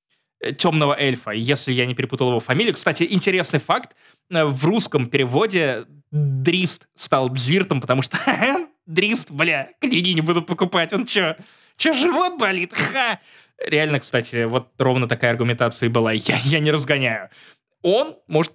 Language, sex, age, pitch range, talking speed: Russian, male, 20-39, 130-200 Hz, 145 wpm